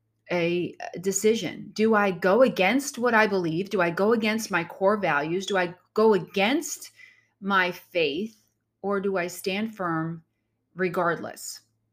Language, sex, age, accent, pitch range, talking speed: English, female, 30-49, American, 155-200 Hz, 140 wpm